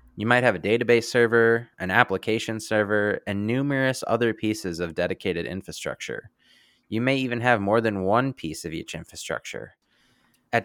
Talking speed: 160 wpm